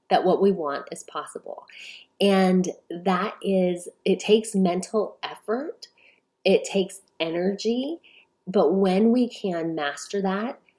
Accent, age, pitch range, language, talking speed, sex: American, 30-49, 160-205 Hz, English, 120 wpm, female